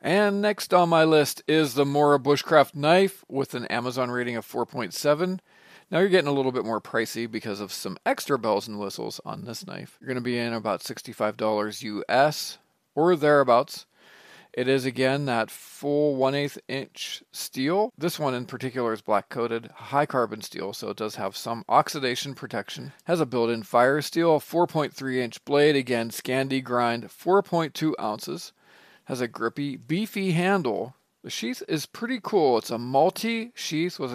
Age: 40-59